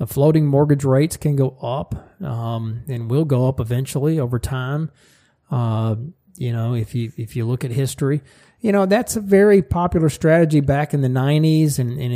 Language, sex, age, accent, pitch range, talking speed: English, male, 40-59, American, 120-150 Hz, 190 wpm